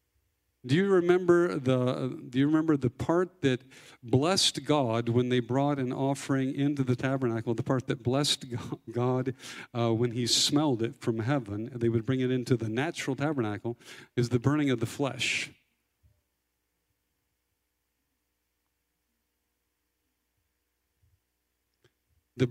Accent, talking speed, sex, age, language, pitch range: American, 125 wpm, male, 50-69, English, 115-150 Hz